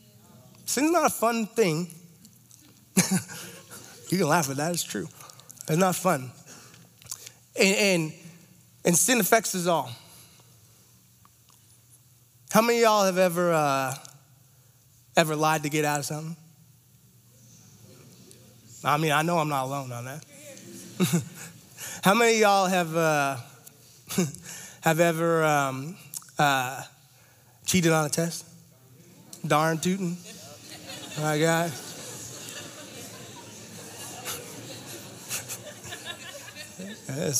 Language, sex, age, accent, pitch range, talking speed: English, male, 20-39, American, 140-185 Hz, 105 wpm